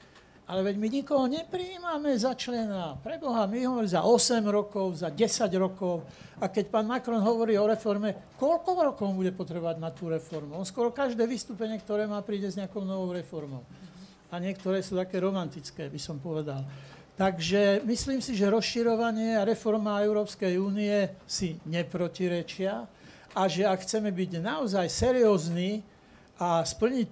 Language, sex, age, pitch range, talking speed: Slovak, male, 60-79, 185-215 Hz, 155 wpm